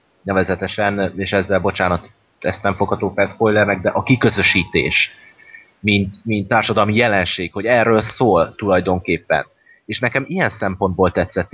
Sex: male